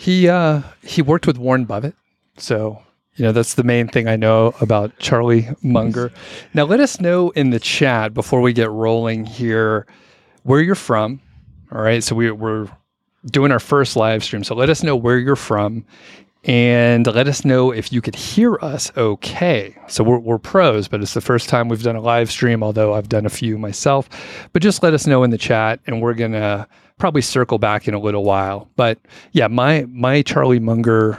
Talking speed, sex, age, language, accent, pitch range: 200 wpm, male, 30-49, English, American, 110-130 Hz